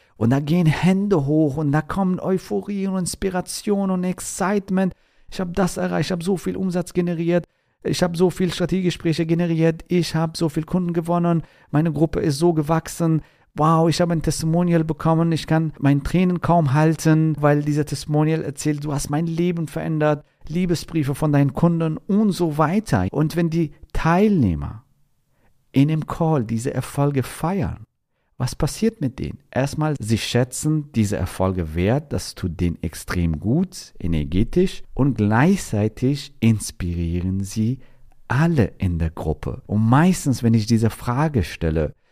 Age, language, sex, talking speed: 40-59, German, male, 155 wpm